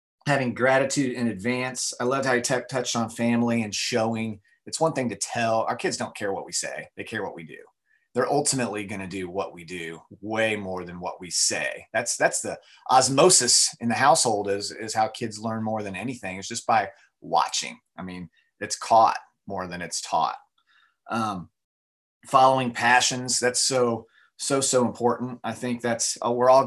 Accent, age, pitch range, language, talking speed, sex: American, 30-49, 105-125 Hz, English, 195 wpm, male